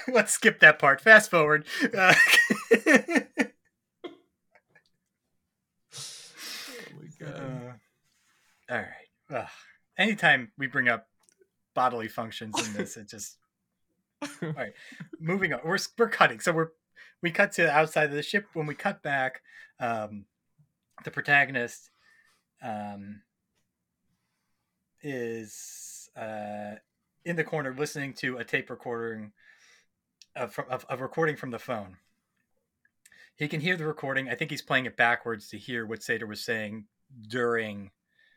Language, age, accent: English, 30-49, American